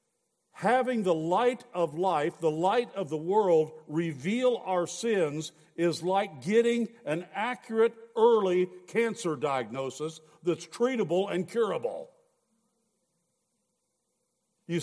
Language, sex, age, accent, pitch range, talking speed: English, male, 60-79, American, 170-235 Hz, 105 wpm